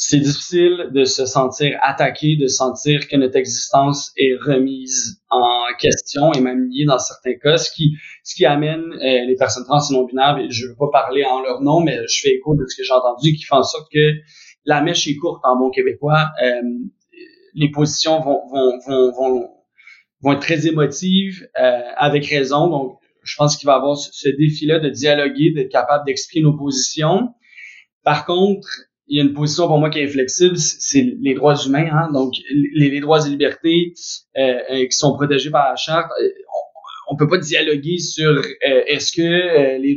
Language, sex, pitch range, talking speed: French, male, 135-165 Hz, 195 wpm